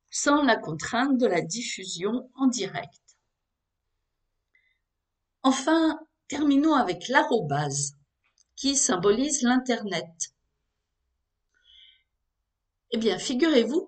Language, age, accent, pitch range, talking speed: French, 50-69, French, 160-260 Hz, 80 wpm